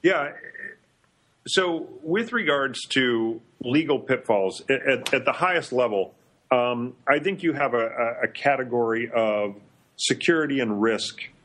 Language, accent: English, American